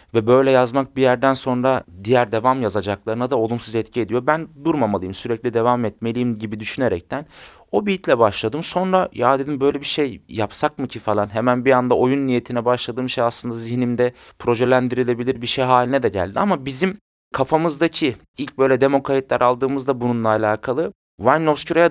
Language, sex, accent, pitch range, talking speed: Turkish, male, native, 110-140 Hz, 160 wpm